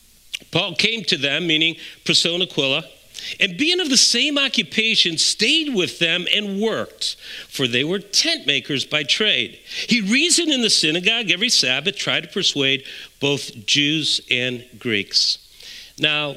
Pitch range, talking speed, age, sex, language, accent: 165-225 Hz, 145 wpm, 50-69, male, English, American